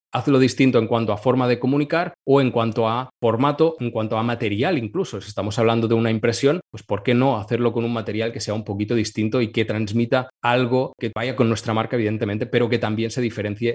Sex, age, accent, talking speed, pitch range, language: male, 20-39, Spanish, 225 wpm, 110-125 Hz, Spanish